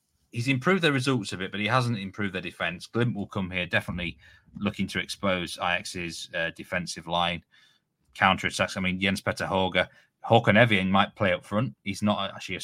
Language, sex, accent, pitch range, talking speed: English, male, British, 95-115 Hz, 190 wpm